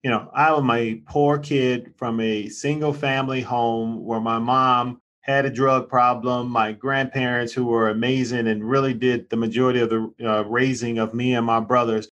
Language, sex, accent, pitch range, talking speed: English, male, American, 115-135 Hz, 185 wpm